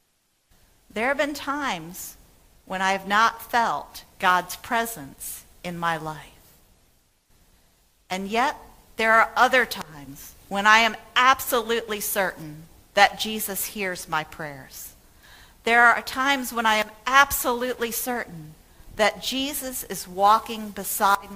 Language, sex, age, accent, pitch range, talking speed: English, female, 50-69, American, 160-225 Hz, 120 wpm